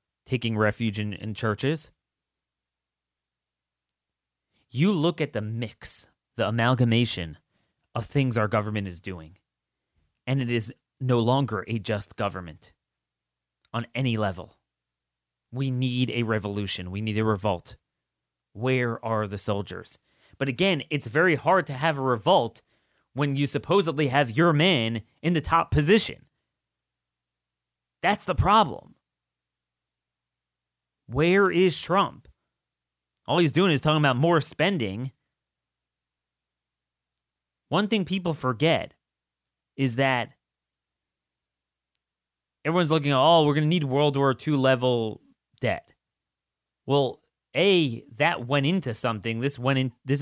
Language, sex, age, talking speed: English, male, 30-49, 120 wpm